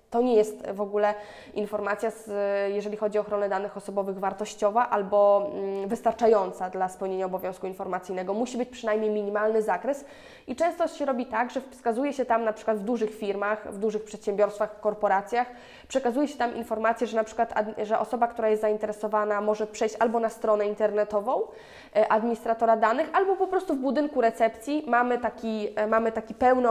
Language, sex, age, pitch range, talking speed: Polish, female, 20-39, 205-240 Hz, 165 wpm